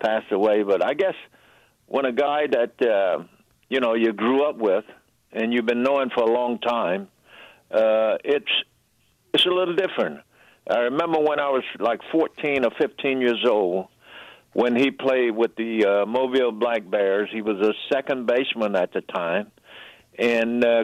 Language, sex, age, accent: English, male, 60-79, American